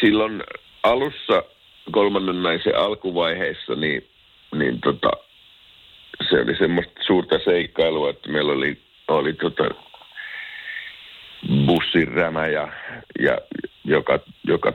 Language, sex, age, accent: Finnish, male, 60-79, native